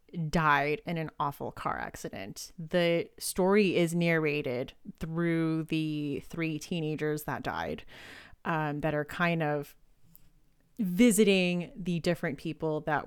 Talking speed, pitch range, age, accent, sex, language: 120 wpm, 150-175 Hz, 30-49, American, female, English